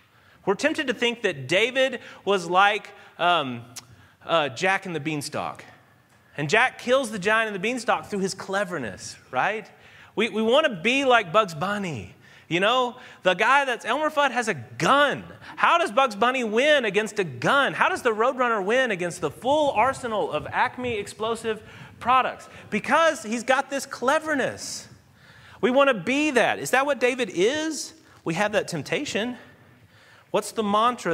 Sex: male